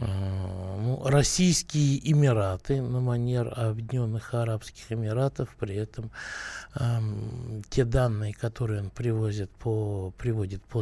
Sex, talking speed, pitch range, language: male, 90 wpm, 105-135 Hz, Russian